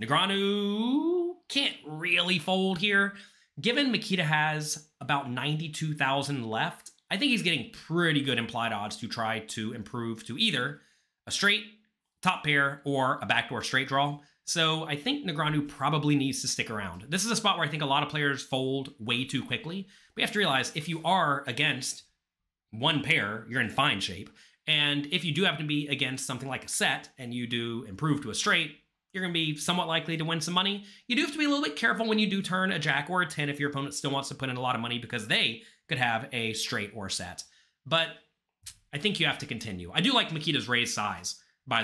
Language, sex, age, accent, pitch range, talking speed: English, male, 30-49, American, 120-165 Hz, 220 wpm